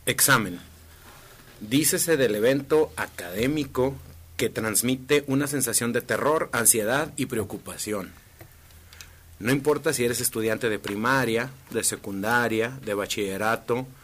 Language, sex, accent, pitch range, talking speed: Spanish, male, Mexican, 110-145 Hz, 105 wpm